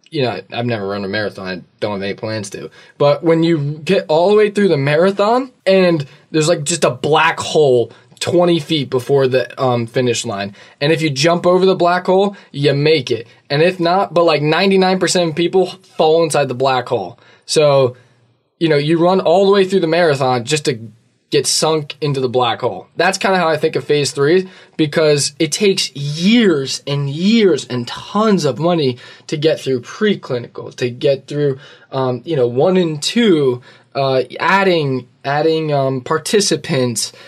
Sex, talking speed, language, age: male, 190 wpm, English, 20-39